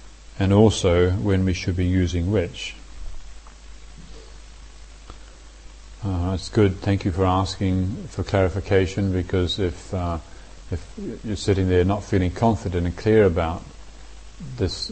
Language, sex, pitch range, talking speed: English, male, 85-95 Hz, 125 wpm